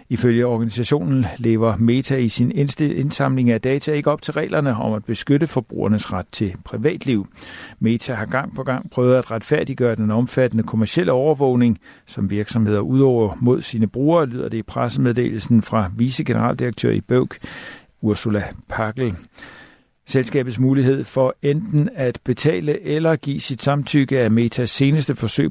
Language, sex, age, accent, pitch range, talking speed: Danish, male, 50-69, native, 110-135 Hz, 145 wpm